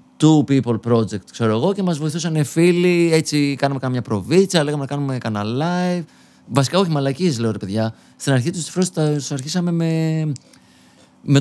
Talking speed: 170 wpm